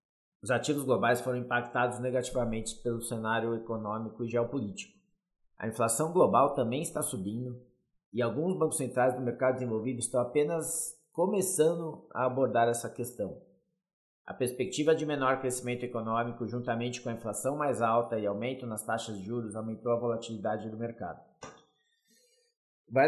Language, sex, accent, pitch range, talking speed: Portuguese, male, Brazilian, 115-145 Hz, 145 wpm